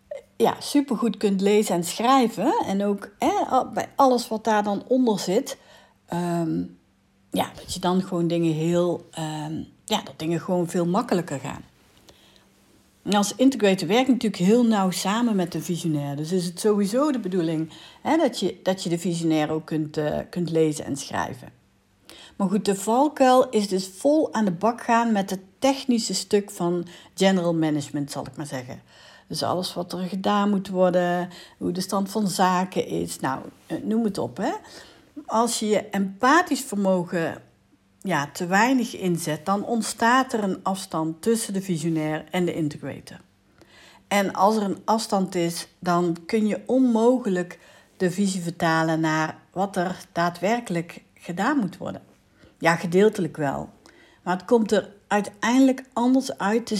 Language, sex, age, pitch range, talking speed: Dutch, female, 60-79, 170-220 Hz, 165 wpm